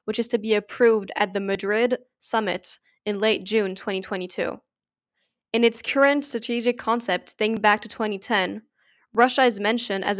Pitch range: 200-235 Hz